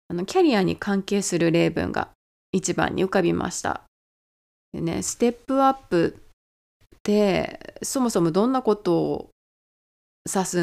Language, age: Japanese, 20-39